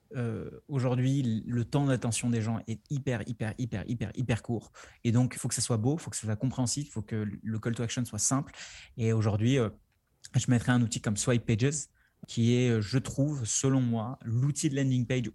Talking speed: 225 wpm